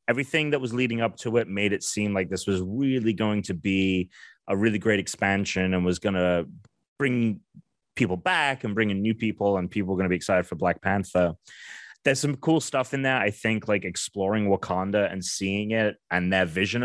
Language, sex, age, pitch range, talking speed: English, male, 30-49, 90-115 Hz, 215 wpm